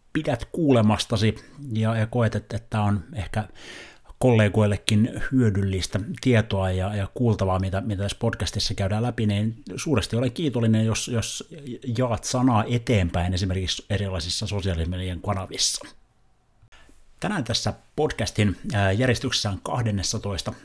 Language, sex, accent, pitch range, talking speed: Finnish, male, native, 95-115 Hz, 115 wpm